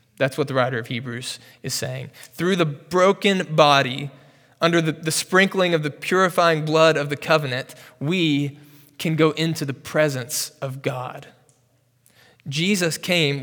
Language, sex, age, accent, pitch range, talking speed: English, male, 20-39, American, 130-160 Hz, 150 wpm